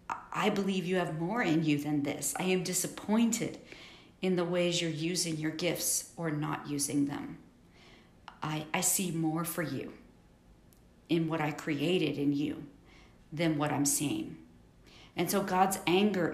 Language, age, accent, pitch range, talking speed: English, 50-69, American, 145-185 Hz, 160 wpm